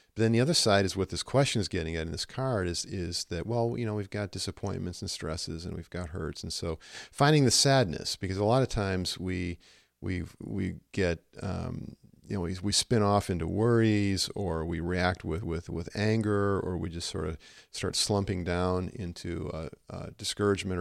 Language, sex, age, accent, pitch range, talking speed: English, male, 50-69, American, 85-105 Hz, 205 wpm